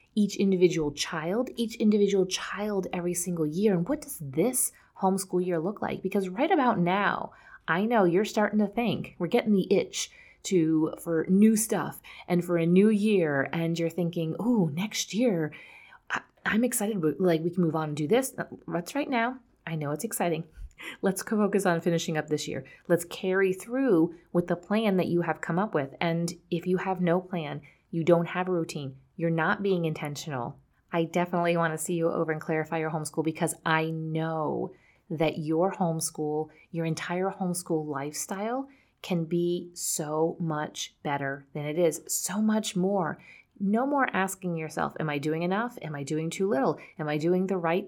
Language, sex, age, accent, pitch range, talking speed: English, female, 30-49, American, 160-200 Hz, 185 wpm